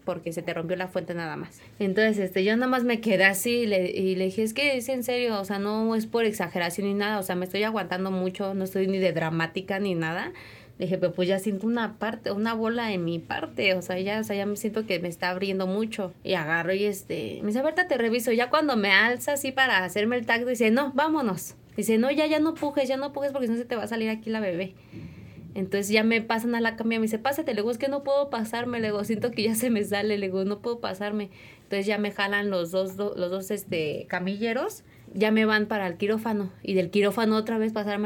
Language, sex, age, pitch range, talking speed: Spanish, female, 20-39, 190-235 Hz, 270 wpm